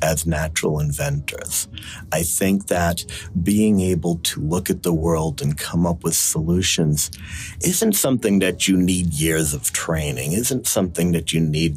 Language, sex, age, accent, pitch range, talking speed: English, male, 40-59, American, 80-100 Hz, 160 wpm